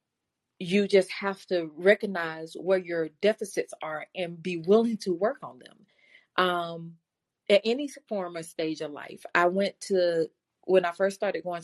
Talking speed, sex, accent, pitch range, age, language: 165 wpm, female, American, 180-230 Hz, 30-49, English